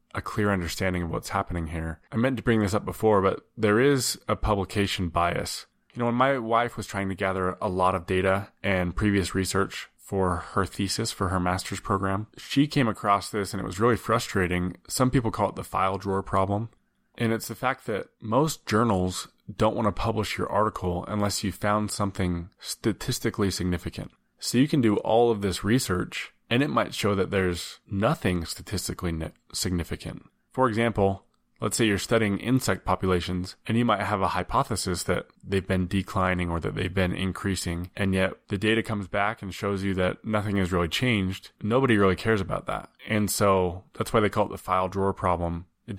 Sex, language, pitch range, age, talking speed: male, English, 90-105 Hz, 20-39, 195 wpm